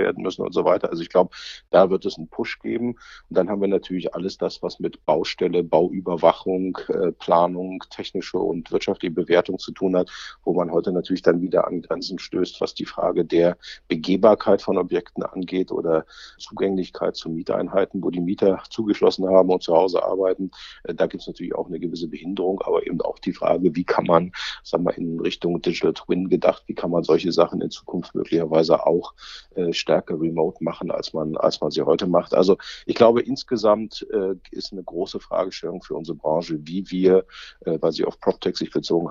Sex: male